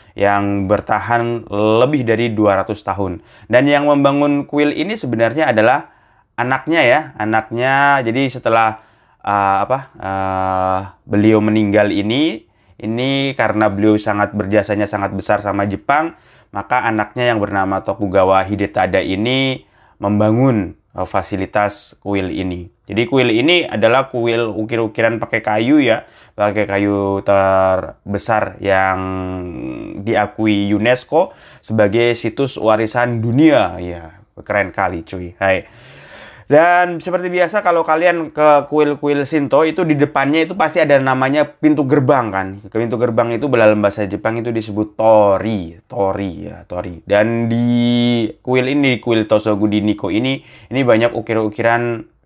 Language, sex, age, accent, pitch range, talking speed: Indonesian, male, 20-39, native, 100-125 Hz, 130 wpm